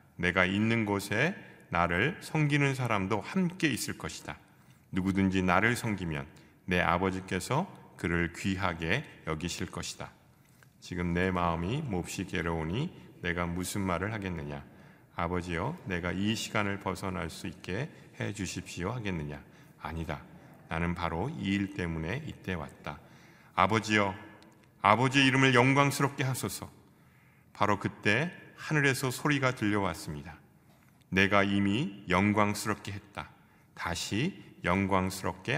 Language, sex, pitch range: Korean, male, 90-115 Hz